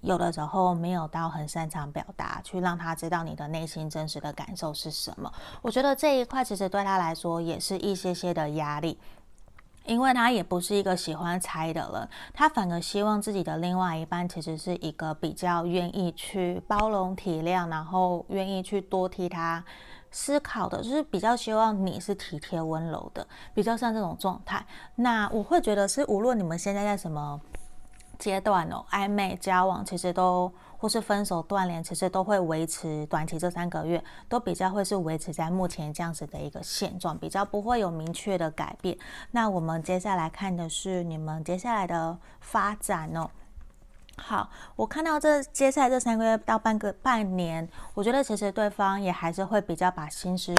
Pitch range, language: 165-205 Hz, Chinese